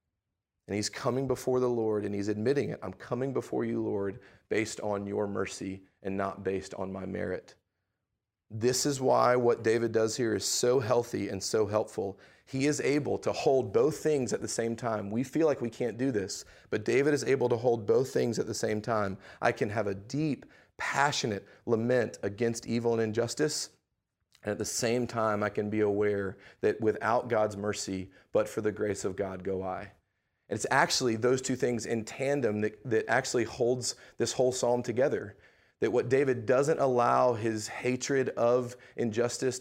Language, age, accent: English, 30-49, American